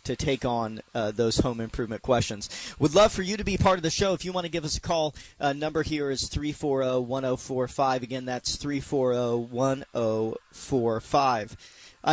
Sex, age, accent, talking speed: male, 40-59, American, 170 wpm